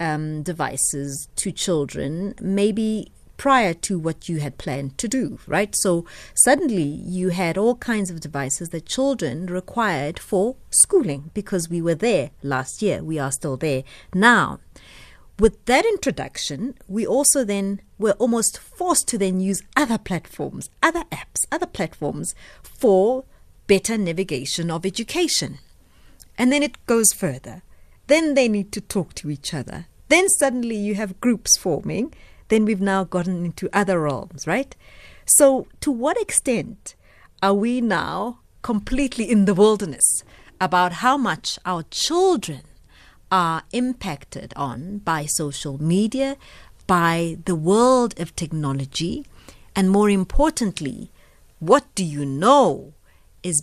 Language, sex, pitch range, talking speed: English, female, 160-235 Hz, 140 wpm